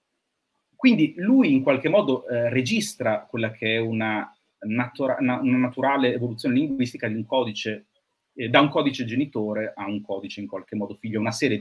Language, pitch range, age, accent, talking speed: Italian, 110-180 Hz, 30-49, native, 170 wpm